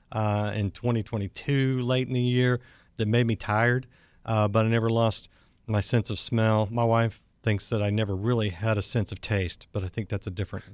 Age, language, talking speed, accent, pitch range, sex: 50-69, English, 210 wpm, American, 100-125 Hz, male